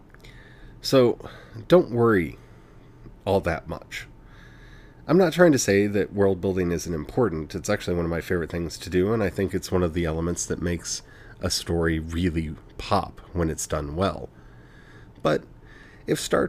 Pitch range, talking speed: 85-125 Hz, 165 wpm